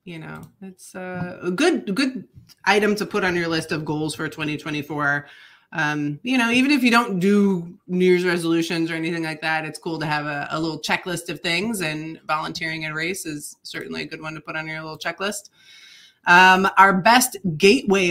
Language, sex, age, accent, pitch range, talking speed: English, female, 20-39, American, 160-200 Hz, 200 wpm